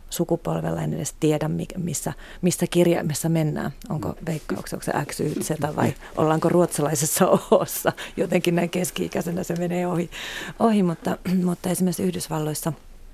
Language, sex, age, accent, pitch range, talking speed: Finnish, female, 30-49, native, 155-180 Hz, 130 wpm